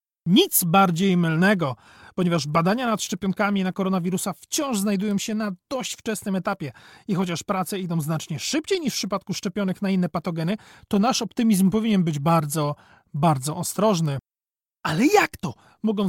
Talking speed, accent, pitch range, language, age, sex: 155 wpm, native, 175-215 Hz, Polish, 40-59, male